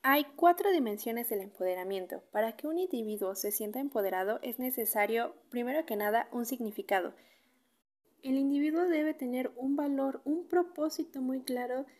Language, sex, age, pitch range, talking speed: Spanish, female, 20-39, 215-275 Hz, 145 wpm